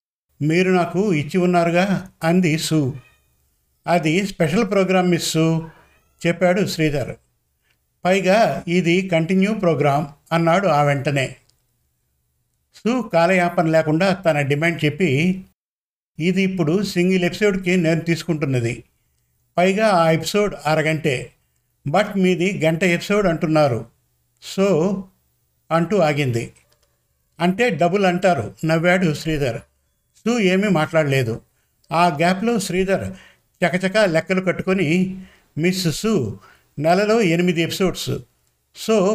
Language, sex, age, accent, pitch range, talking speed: Telugu, male, 50-69, native, 145-185 Hz, 100 wpm